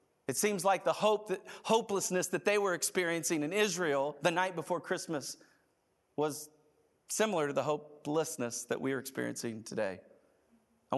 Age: 40-59